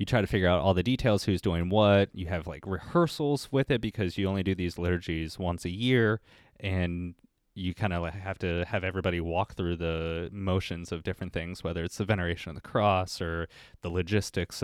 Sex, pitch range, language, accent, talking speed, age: male, 85-105 Hz, English, American, 210 wpm, 20-39